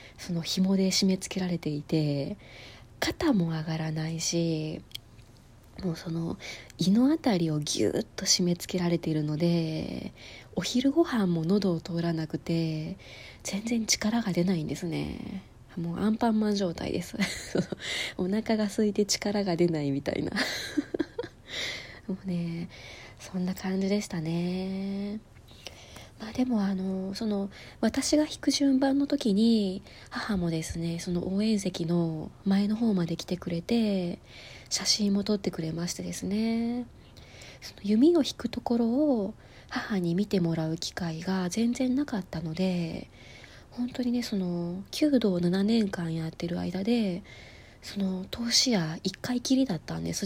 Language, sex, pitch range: Japanese, female, 165-215 Hz